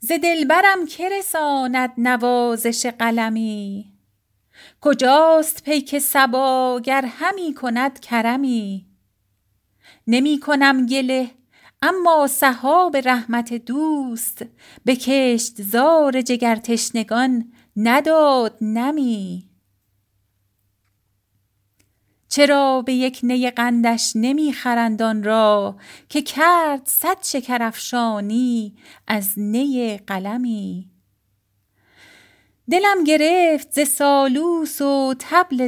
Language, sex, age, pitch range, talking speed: Persian, female, 40-59, 215-280 Hz, 75 wpm